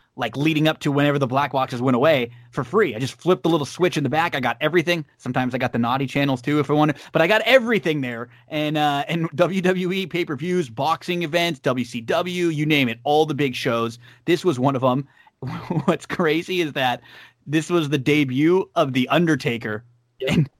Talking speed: 205 wpm